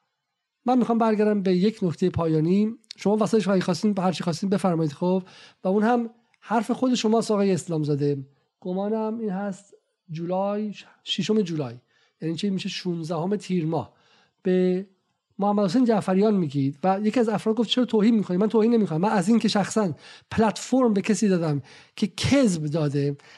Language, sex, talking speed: Persian, male, 170 wpm